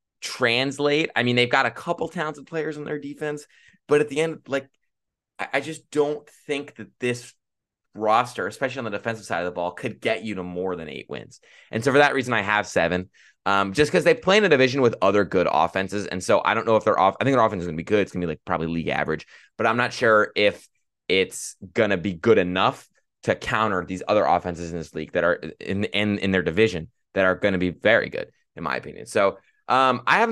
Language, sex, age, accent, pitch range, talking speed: English, male, 20-39, American, 95-130 Hz, 240 wpm